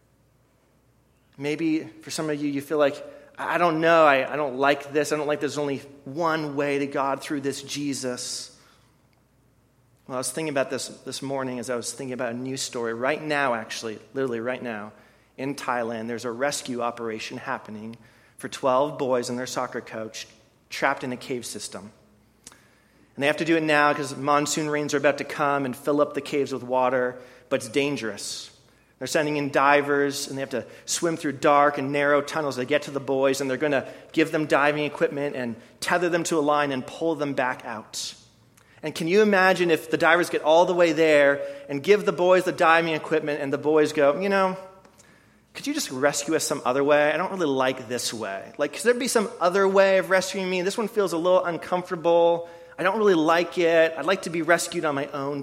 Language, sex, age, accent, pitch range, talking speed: English, male, 30-49, American, 130-165 Hz, 220 wpm